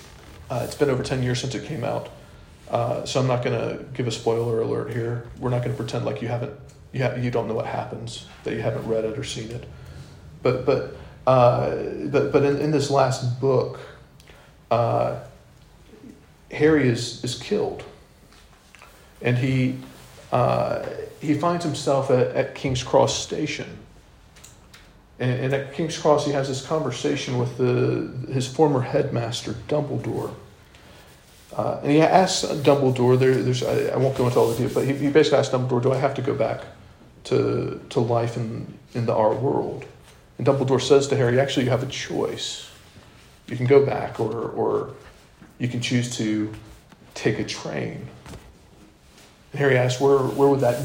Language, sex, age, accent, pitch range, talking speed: English, male, 40-59, American, 120-140 Hz, 175 wpm